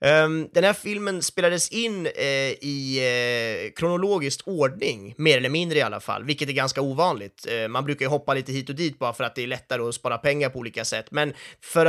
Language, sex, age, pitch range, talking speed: Swedish, male, 30-49, 125-160 Hz, 200 wpm